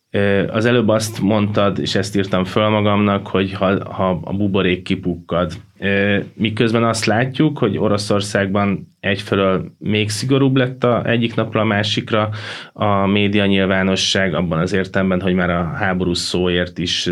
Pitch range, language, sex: 90-110 Hz, Hungarian, male